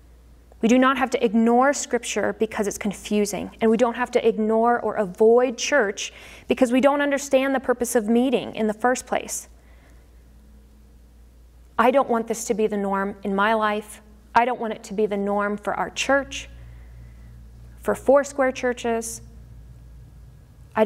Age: 30-49